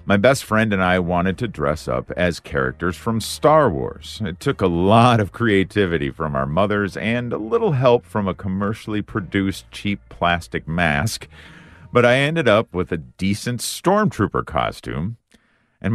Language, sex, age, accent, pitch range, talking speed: English, male, 50-69, American, 75-105 Hz, 165 wpm